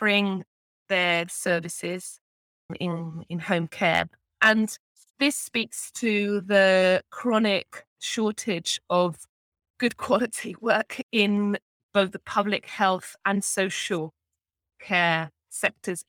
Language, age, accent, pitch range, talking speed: English, 20-39, British, 180-220 Hz, 100 wpm